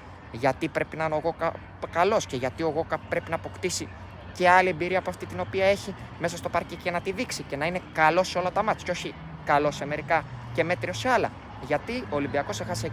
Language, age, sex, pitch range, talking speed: Greek, 20-39, male, 135-175 Hz, 230 wpm